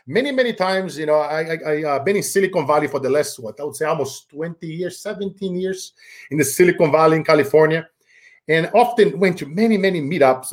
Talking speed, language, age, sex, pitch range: 200 wpm, English, 40-59, male, 140-210 Hz